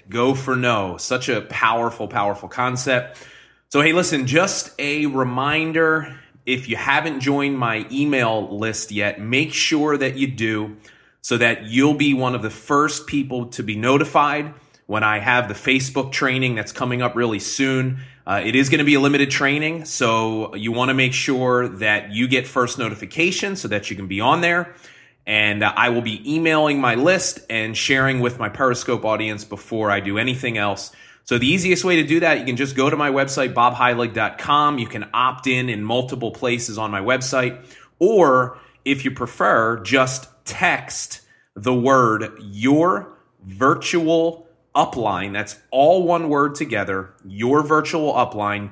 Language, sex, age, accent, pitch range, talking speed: English, male, 30-49, American, 110-145 Hz, 170 wpm